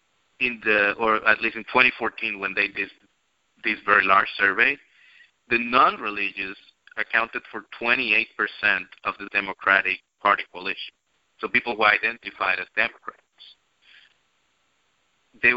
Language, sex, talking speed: English, male, 120 wpm